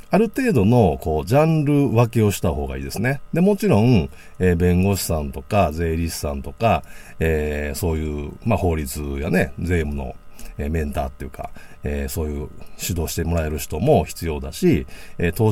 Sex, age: male, 50-69